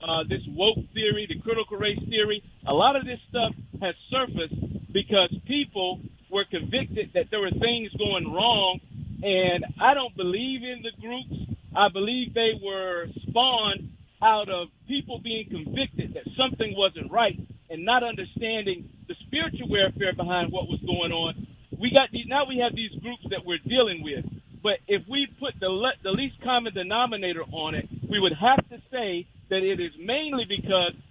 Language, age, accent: English, 50-69, American